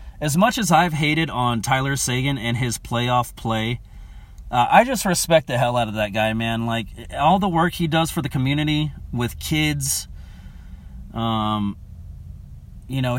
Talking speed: 170 wpm